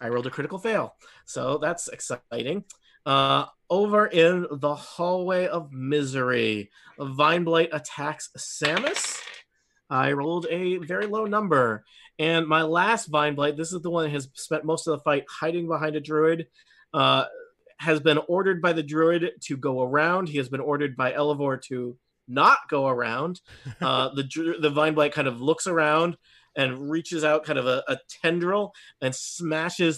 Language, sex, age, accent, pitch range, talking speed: English, male, 30-49, American, 140-175 Hz, 160 wpm